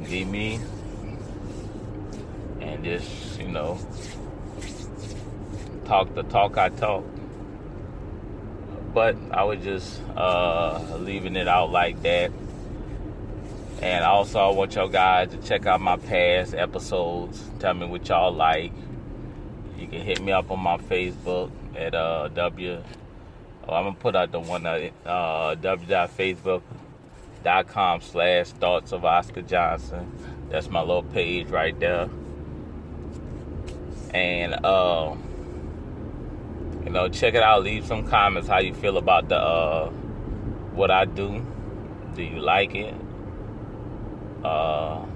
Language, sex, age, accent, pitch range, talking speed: English, male, 30-49, American, 90-105 Hz, 125 wpm